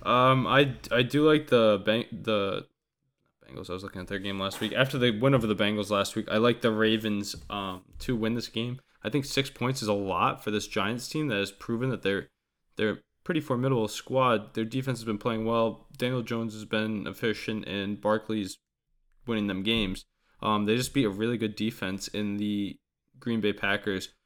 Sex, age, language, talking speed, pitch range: male, 20-39, English, 210 wpm, 100-120 Hz